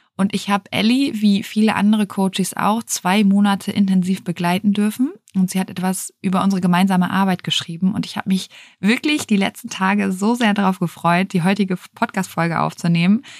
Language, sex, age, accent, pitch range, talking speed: German, female, 20-39, German, 180-210 Hz, 175 wpm